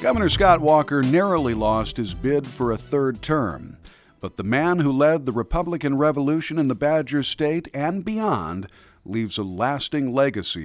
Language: English